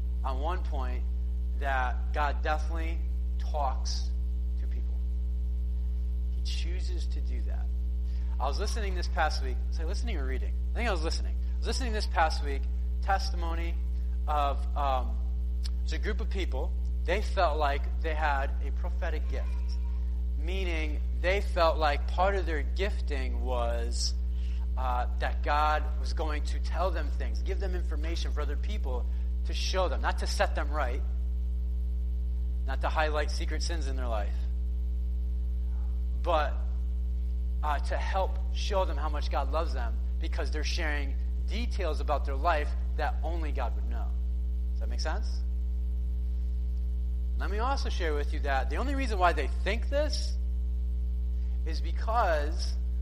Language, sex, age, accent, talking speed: English, male, 30-49, American, 150 wpm